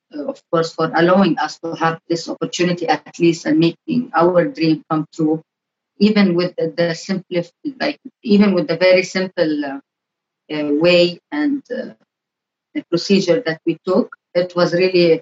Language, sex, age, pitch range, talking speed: English, female, 30-49, 165-195 Hz, 165 wpm